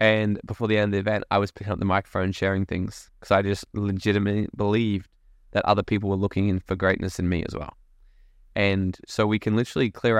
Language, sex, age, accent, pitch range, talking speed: English, male, 10-29, Australian, 100-110 Hz, 225 wpm